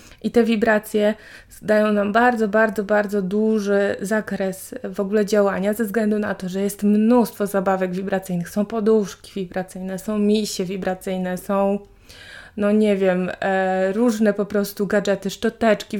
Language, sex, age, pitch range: Polish, female, 20-39, 195-220 Hz